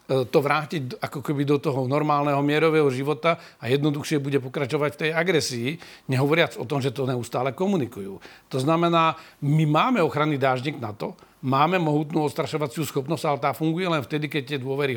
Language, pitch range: Slovak, 135-160 Hz